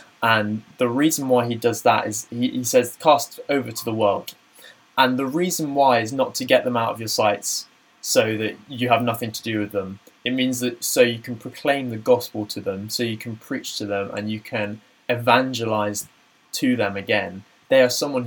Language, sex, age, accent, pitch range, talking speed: English, male, 20-39, British, 105-125 Hz, 210 wpm